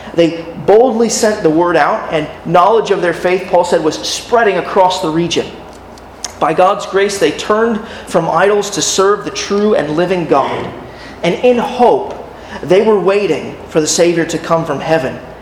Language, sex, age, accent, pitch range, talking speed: English, male, 30-49, American, 160-205 Hz, 175 wpm